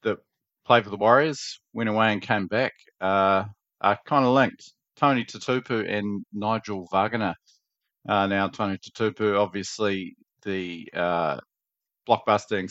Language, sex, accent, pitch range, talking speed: English, male, Australian, 95-110 Hz, 125 wpm